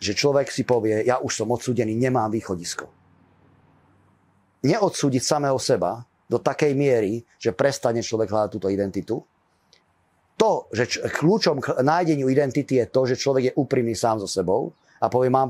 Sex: male